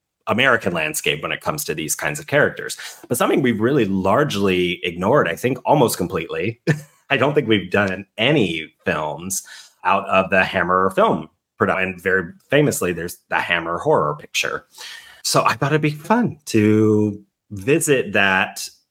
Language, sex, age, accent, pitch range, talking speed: English, male, 30-49, American, 95-125 Hz, 155 wpm